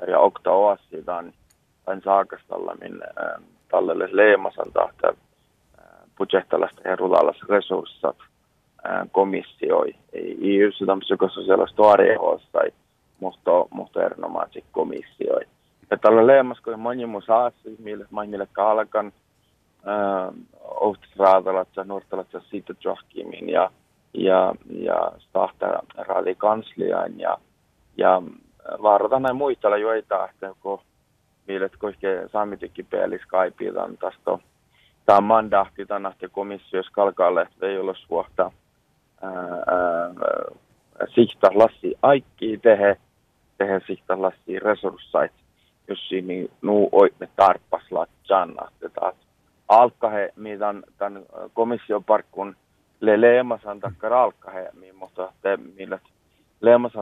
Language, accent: Finnish, native